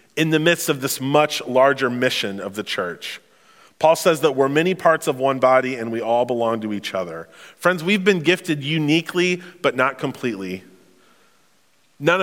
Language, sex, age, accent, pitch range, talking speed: English, male, 30-49, American, 130-175 Hz, 175 wpm